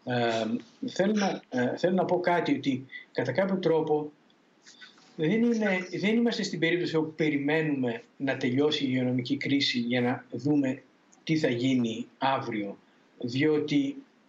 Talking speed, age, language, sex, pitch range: 120 wpm, 50-69, Greek, male, 135-200 Hz